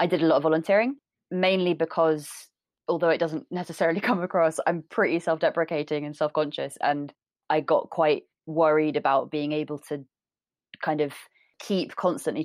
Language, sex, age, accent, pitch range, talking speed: English, female, 20-39, British, 140-165 Hz, 155 wpm